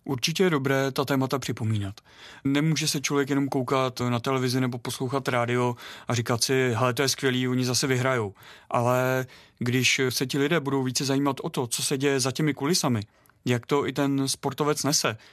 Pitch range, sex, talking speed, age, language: 120-140 Hz, male, 190 wpm, 30-49, Czech